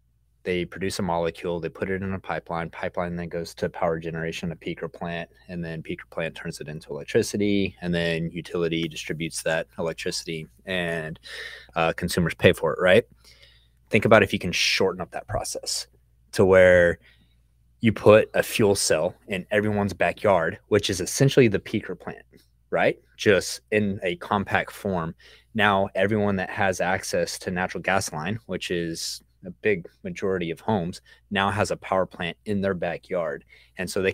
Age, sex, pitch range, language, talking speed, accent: 20-39, male, 85-100 Hz, English, 170 wpm, American